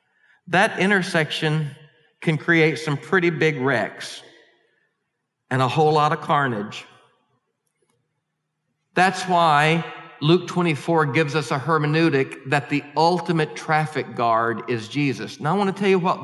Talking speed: 130 wpm